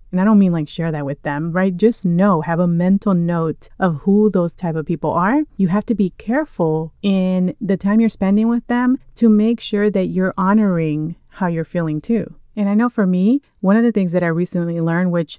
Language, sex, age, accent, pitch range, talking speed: English, female, 30-49, American, 175-210 Hz, 230 wpm